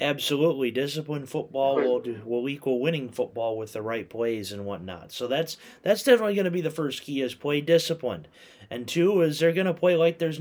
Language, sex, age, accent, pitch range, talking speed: English, male, 30-49, American, 125-175 Hz, 210 wpm